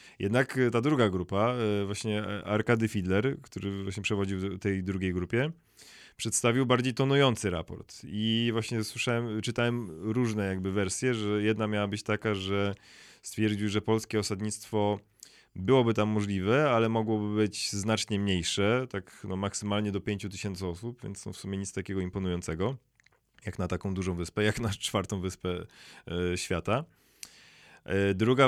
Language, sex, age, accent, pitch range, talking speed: Polish, male, 20-39, native, 100-120 Hz, 140 wpm